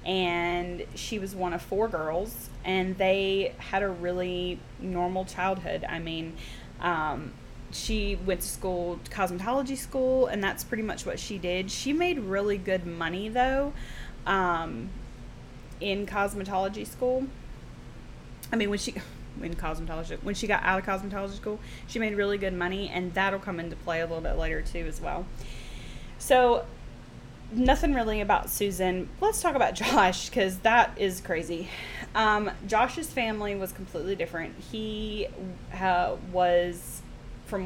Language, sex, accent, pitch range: English, female, American, 175-210 Hz